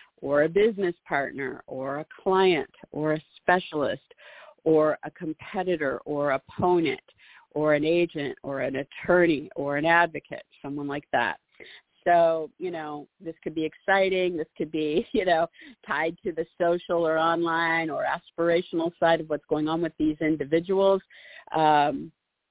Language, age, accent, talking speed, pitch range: English, 50-69, American, 150 wpm, 150-175 Hz